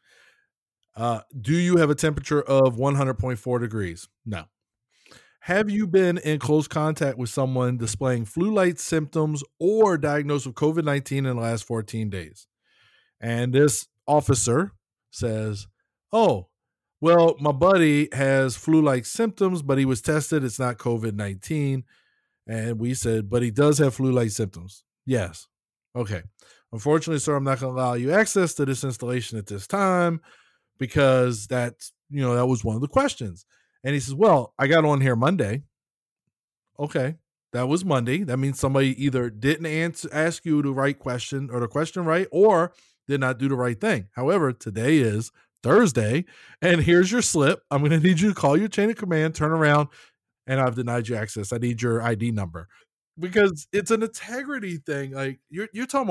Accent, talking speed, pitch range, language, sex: American, 170 wpm, 120-160 Hz, English, male